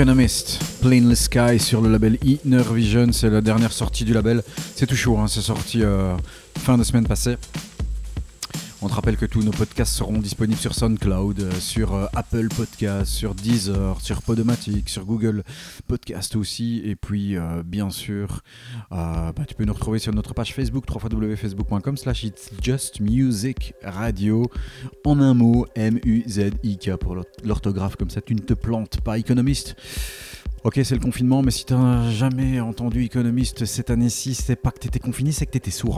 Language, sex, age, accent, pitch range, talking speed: French, male, 30-49, French, 100-125 Hz, 175 wpm